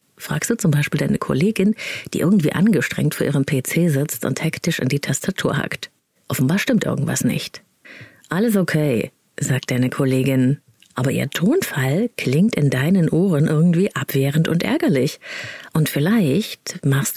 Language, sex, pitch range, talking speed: German, female, 140-185 Hz, 145 wpm